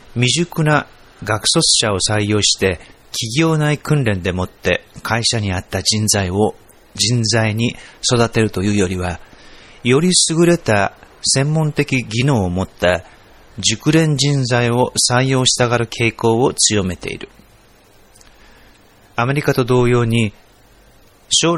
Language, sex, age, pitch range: Japanese, male, 40-59, 100-135 Hz